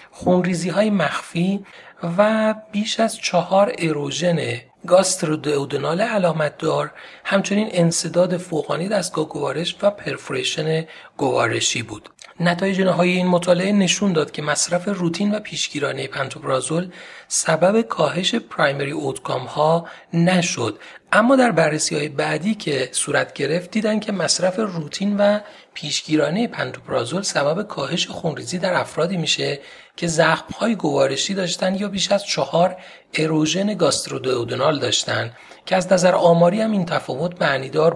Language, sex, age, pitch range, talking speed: Persian, male, 40-59, 155-200 Hz, 125 wpm